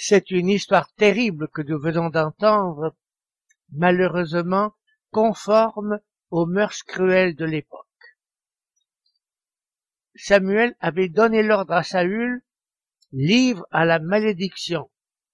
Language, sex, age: French, male, 60-79